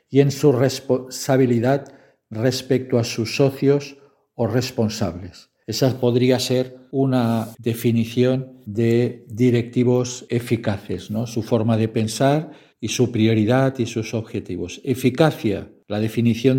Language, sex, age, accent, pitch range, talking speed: Spanish, male, 50-69, Spanish, 115-135 Hz, 110 wpm